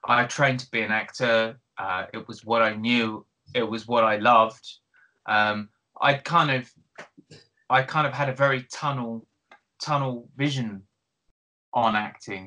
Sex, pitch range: male, 110-135 Hz